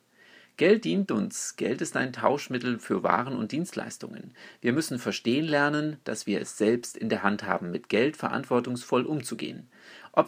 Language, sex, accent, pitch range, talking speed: German, male, German, 125-165 Hz, 165 wpm